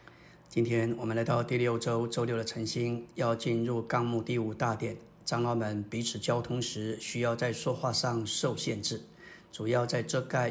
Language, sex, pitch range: Chinese, male, 115-150 Hz